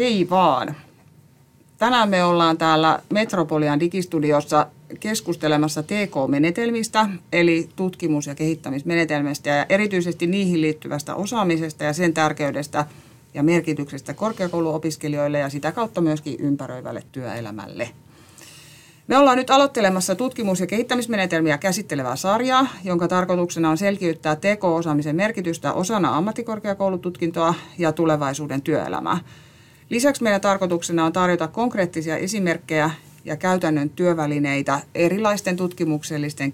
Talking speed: 105 wpm